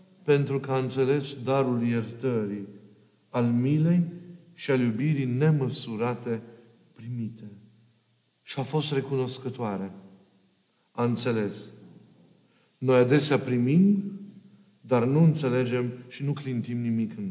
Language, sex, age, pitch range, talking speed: Romanian, male, 50-69, 120-160 Hz, 105 wpm